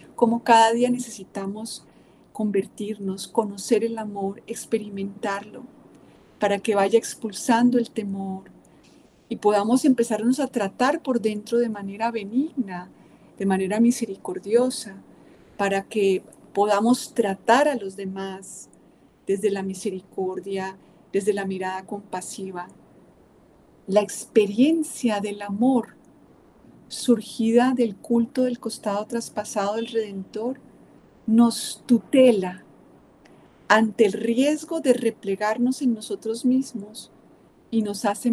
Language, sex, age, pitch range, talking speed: Spanish, female, 40-59, 200-245 Hz, 105 wpm